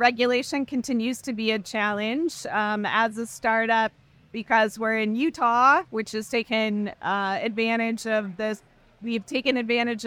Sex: female